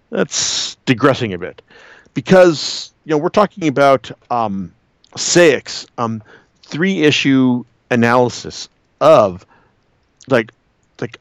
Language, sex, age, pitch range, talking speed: English, male, 50-69, 115-150 Hz, 100 wpm